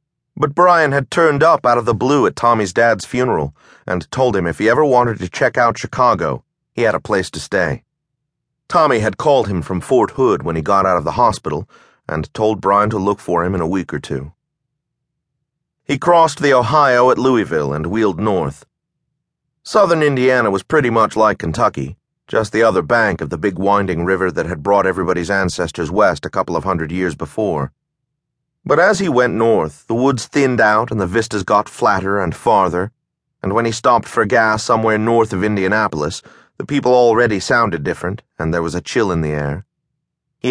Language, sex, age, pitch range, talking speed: English, male, 30-49, 95-130 Hz, 195 wpm